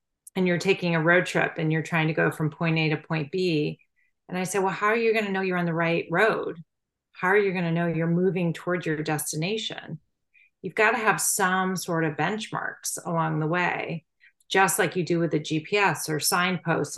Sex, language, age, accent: female, English, 30-49, American